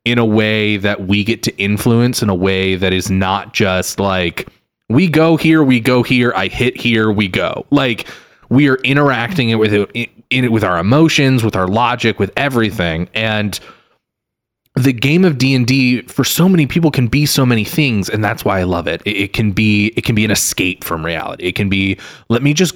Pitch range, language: 105-130 Hz, English